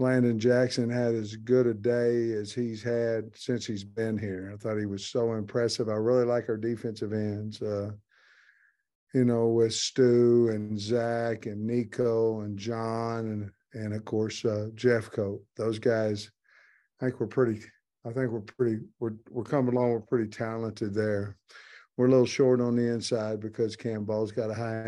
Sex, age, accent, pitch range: male, 50-69, American, 110-125 Hz